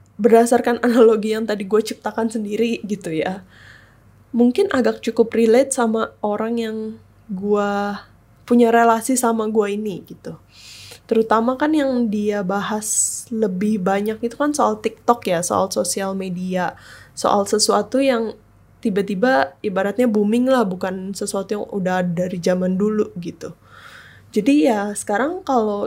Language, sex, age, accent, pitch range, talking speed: Indonesian, female, 10-29, native, 195-235 Hz, 130 wpm